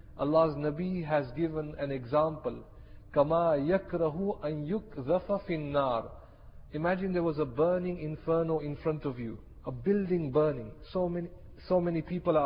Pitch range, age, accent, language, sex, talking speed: 145-175 Hz, 40-59, Indian, English, male, 120 wpm